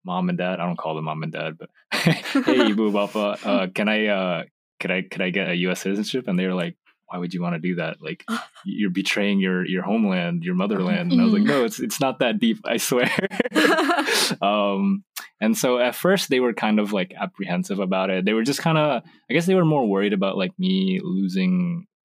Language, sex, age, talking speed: English, male, 20-39, 230 wpm